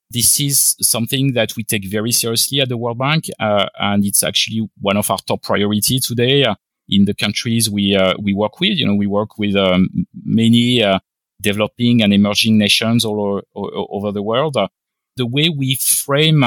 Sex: male